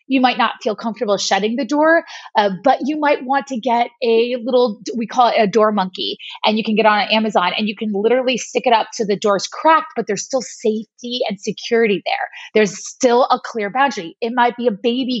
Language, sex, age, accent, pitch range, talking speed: English, female, 30-49, American, 215-270 Hz, 225 wpm